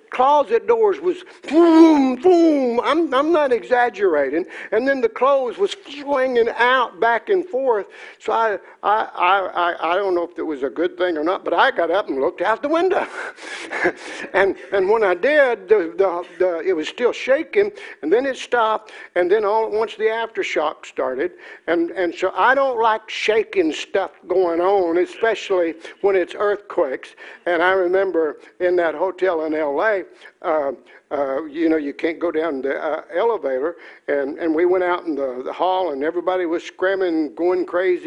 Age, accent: 60-79, American